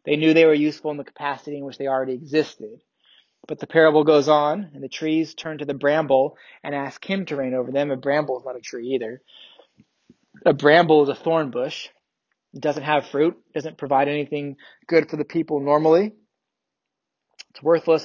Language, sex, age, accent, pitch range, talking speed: English, male, 20-39, American, 140-160 Hz, 195 wpm